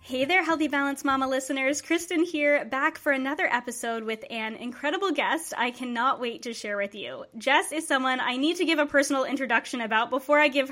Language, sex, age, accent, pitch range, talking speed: English, female, 20-39, American, 225-295 Hz, 205 wpm